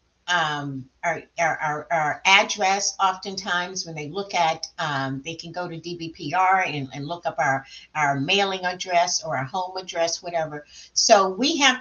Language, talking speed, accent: English, 160 wpm, American